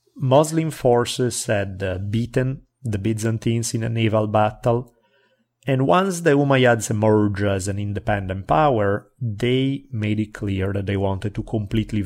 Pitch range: 100-125 Hz